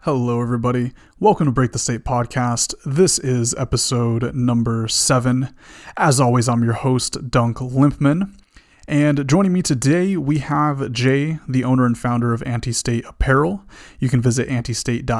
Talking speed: 150 wpm